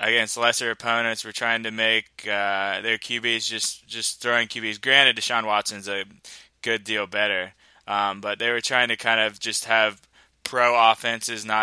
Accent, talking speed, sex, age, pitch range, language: American, 170 wpm, male, 20-39, 100-115 Hz, English